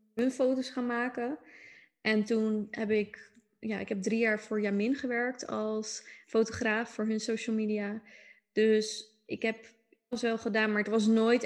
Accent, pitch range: Dutch, 205-225 Hz